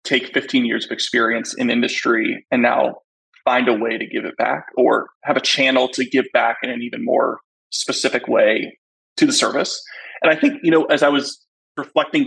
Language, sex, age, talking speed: English, male, 20-39, 200 wpm